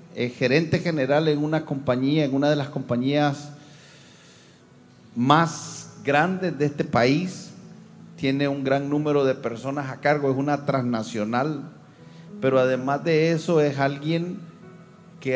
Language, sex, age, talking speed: Spanish, male, 40-59, 135 wpm